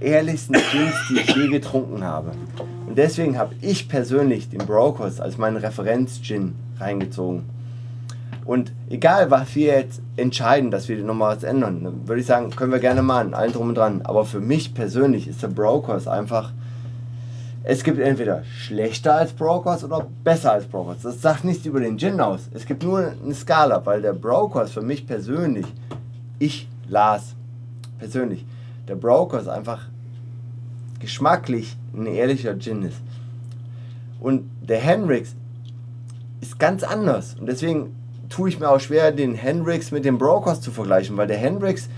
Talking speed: 155 wpm